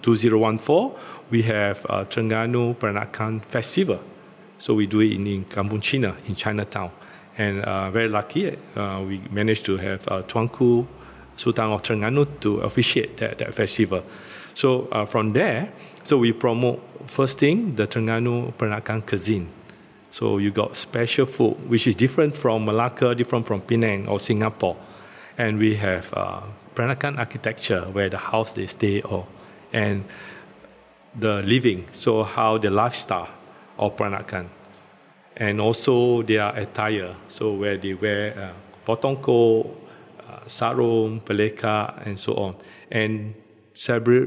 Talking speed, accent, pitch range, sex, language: 140 wpm, Malaysian, 105-120 Hz, male, English